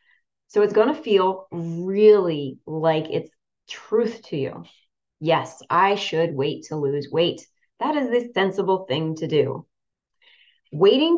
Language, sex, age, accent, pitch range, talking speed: English, female, 30-49, American, 165-220 Hz, 140 wpm